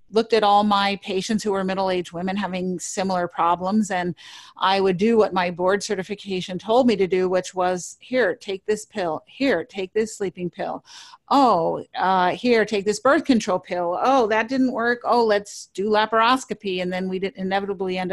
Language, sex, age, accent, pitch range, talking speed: English, female, 40-59, American, 180-220 Hz, 185 wpm